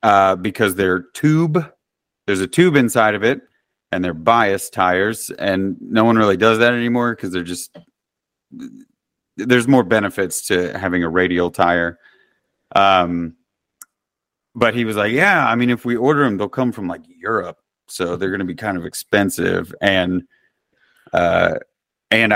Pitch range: 95-120 Hz